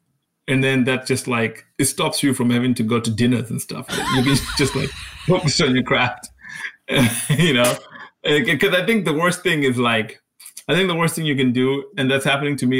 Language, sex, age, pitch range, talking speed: English, male, 20-39, 120-145 Hz, 225 wpm